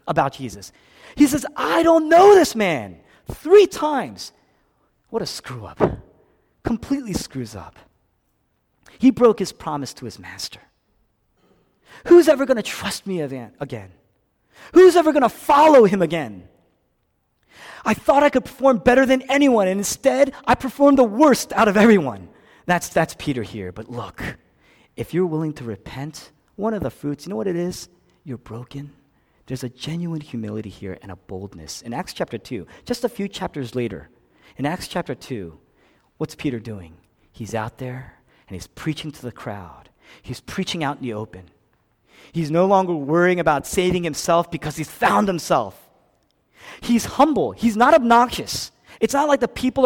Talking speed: 165 wpm